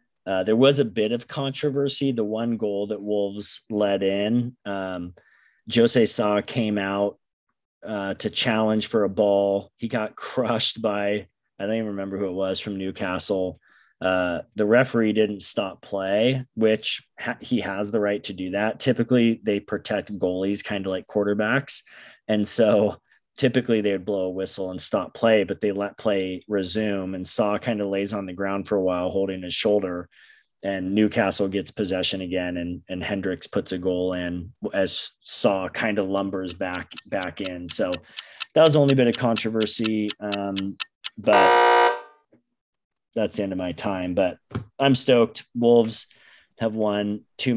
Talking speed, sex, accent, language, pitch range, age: 165 wpm, male, American, English, 95-110 Hz, 30-49